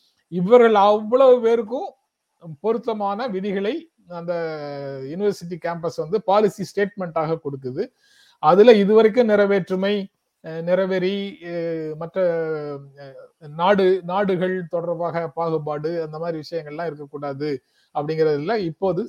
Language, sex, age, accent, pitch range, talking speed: Tamil, male, 30-49, native, 155-200 Hz, 85 wpm